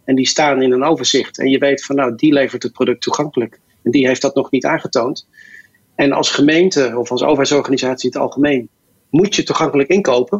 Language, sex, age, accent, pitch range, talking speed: Dutch, male, 40-59, Dutch, 135-170 Hz, 200 wpm